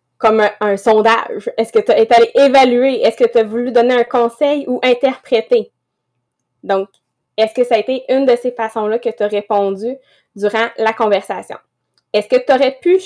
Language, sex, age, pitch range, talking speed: English, female, 20-39, 215-265 Hz, 195 wpm